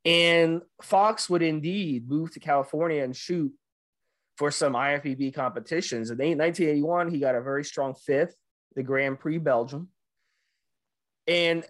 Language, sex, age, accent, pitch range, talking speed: English, male, 20-39, American, 135-175 Hz, 135 wpm